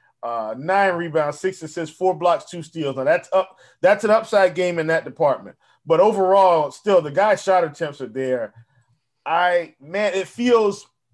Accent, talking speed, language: American, 170 wpm, English